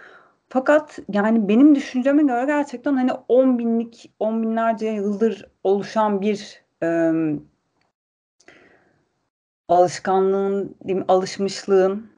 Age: 30-49